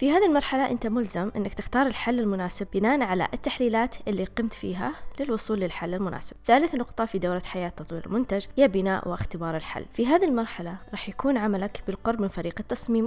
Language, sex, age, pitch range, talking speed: Arabic, female, 20-39, 190-245 Hz, 180 wpm